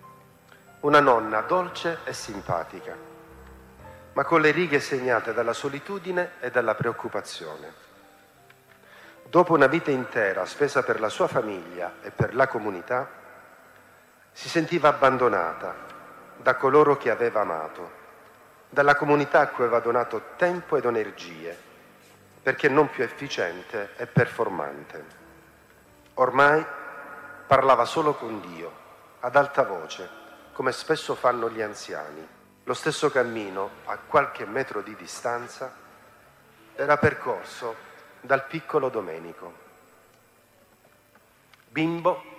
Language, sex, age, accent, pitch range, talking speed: Italian, male, 40-59, native, 120-160 Hz, 110 wpm